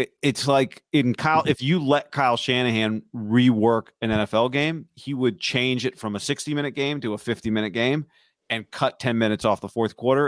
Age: 30-49